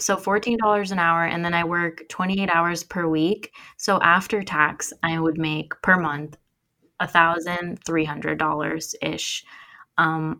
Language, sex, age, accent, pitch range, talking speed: English, female, 10-29, American, 160-190 Hz, 135 wpm